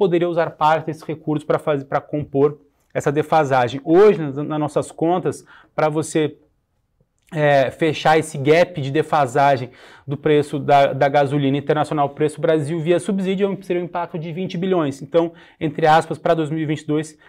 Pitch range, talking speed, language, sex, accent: 145-175 Hz, 155 wpm, Portuguese, male, Brazilian